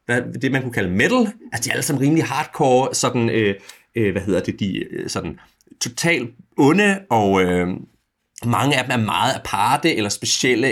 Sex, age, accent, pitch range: male, 30-49, native, 110-150 Hz